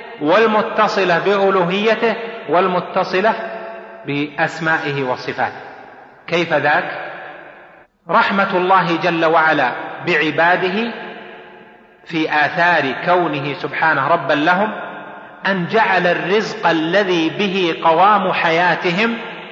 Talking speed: 75 wpm